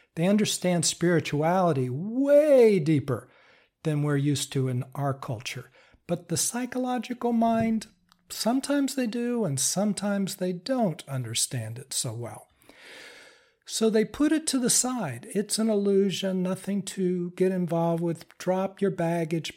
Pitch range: 155-220 Hz